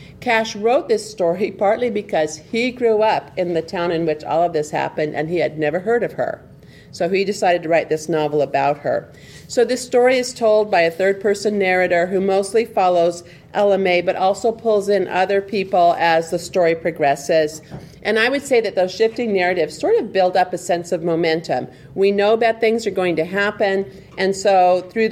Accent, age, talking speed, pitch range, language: American, 50-69, 205 wpm, 160-200 Hz, English